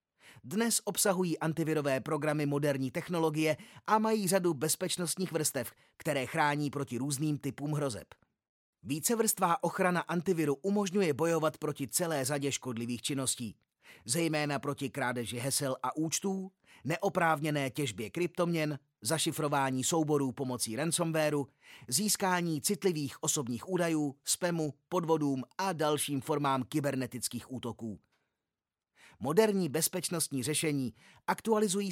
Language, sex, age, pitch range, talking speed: Czech, male, 30-49, 135-175 Hz, 105 wpm